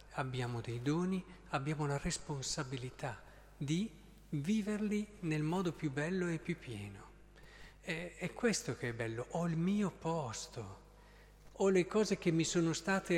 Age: 50-69